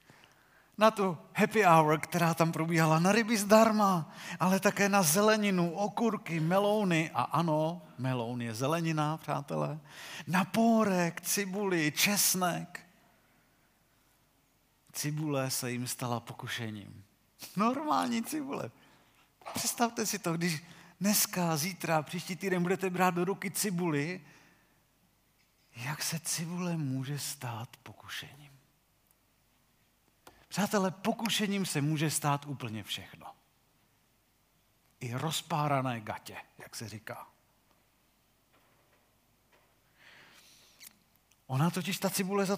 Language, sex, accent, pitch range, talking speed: Czech, male, native, 130-190 Hz, 100 wpm